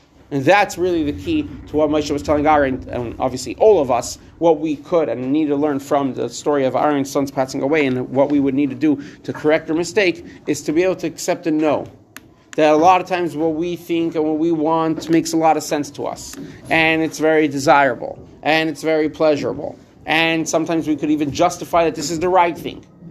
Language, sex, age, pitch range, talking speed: English, male, 40-59, 140-170 Hz, 230 wpm